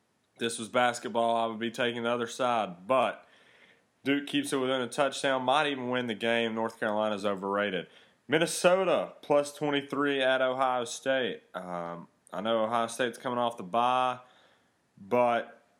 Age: 30-49